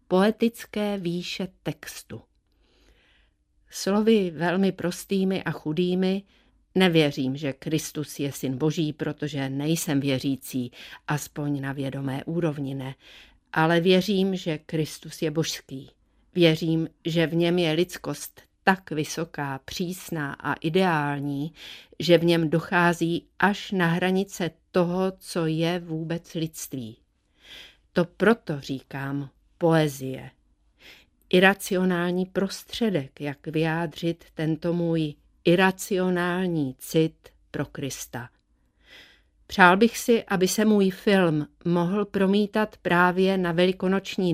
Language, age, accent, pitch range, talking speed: Czech, 50-69, native, 155-185 Hz, 105 wpm